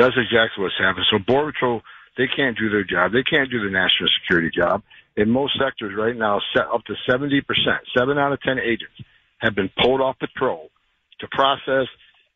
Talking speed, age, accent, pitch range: 200 wpm, 60-79, American, 125-170 Hz